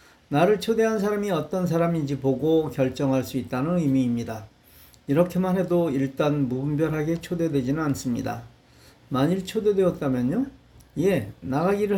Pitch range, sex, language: 135-175 Hz, male, Korean